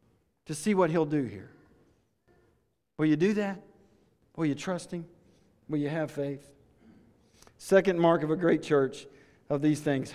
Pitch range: 135-175 Hz